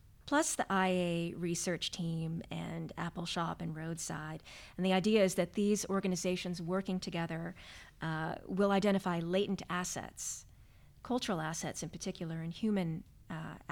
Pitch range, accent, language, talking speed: 165-195 Hz, American, English, 135 wpm